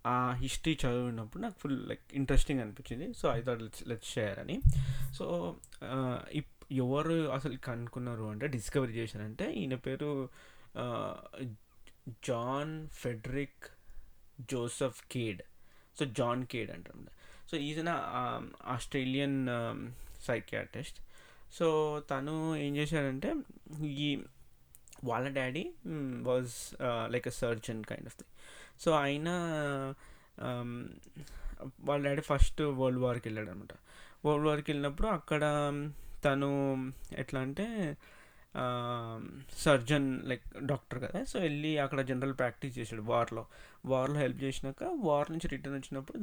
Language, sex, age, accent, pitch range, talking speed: Telugu, male, 20-39, native, 120-145 Hz, 110 wpm